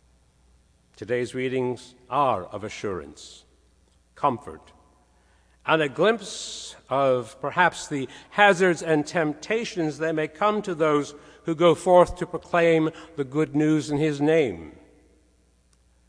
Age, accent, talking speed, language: 60-79, American, 115 wpm, English